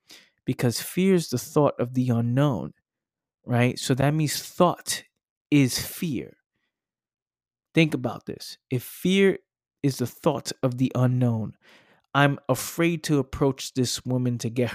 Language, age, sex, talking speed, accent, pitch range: English, 20-39, male, 140 wpm, American, 120-140 Hz